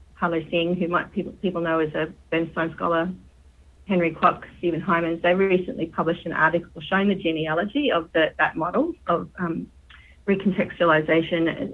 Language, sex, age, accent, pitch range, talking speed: English, female, 40-59, Australian, 160-195 Hz, 155 wpm